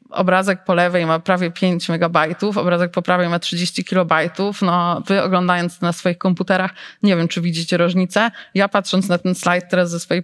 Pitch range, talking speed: 175-200 Hz, 190 wpm